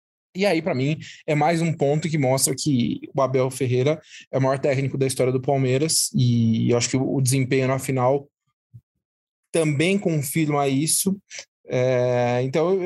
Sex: male